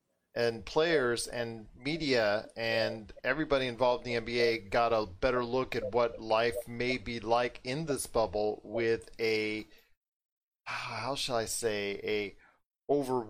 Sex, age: male, 40-59